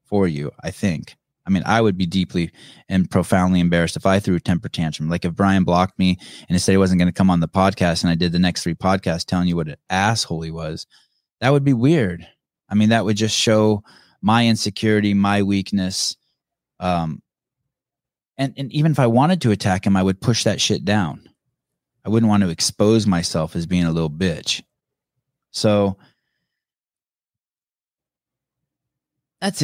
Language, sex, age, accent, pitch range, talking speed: English, male, 20-39, American, 90-125 Hz, 185 wpm